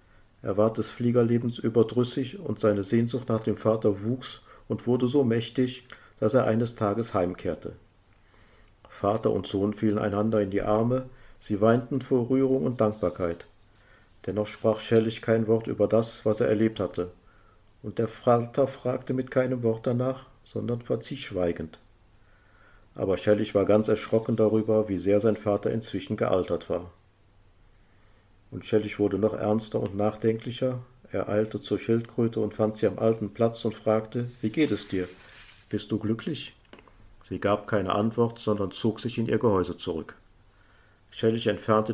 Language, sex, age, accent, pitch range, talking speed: German, male, 50-69, German, 100-115 Hz, 155 wpm